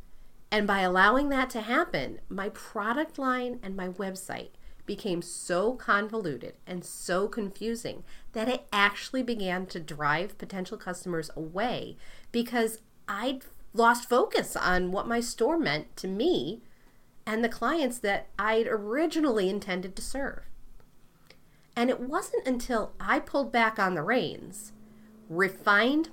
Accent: American